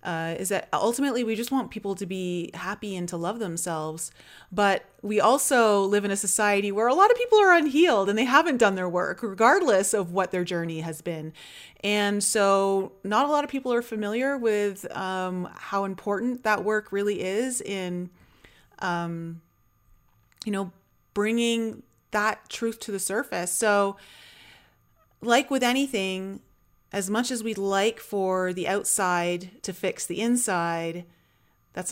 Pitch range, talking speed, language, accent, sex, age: 175-215 Hz, 160 wpm, English, American, female, 30-49